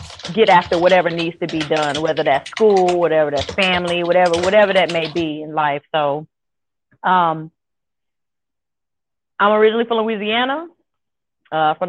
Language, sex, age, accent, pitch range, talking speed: English, female, 30-49, American, 155-190 Hz, 140 wpm